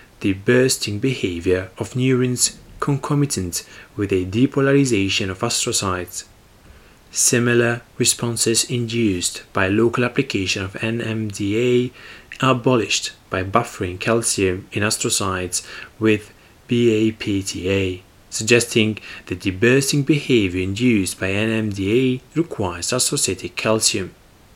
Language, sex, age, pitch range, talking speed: English, male, 30-49, 95-120 Hz, 95 wpm